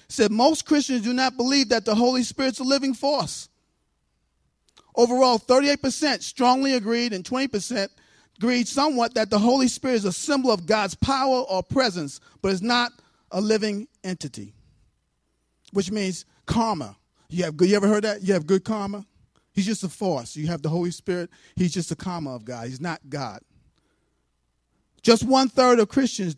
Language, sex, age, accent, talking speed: English, male, 40-59, American, 170 wpm